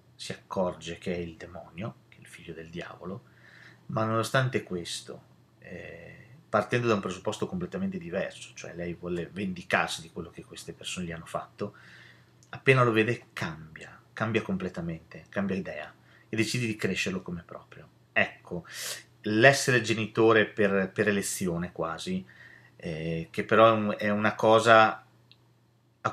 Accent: native